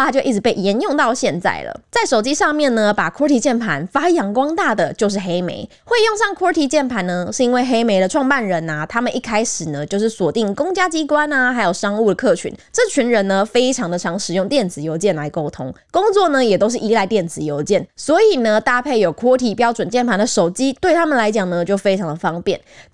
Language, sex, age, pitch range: Chinese, female, 20-39, 190-285 Hz